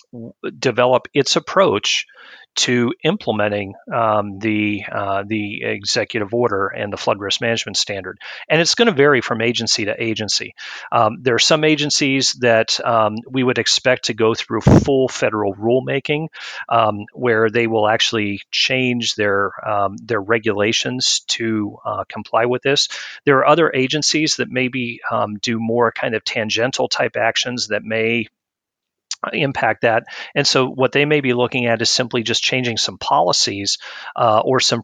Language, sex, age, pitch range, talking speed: English, male, 40-59, 110-130 Hz, 160 wpm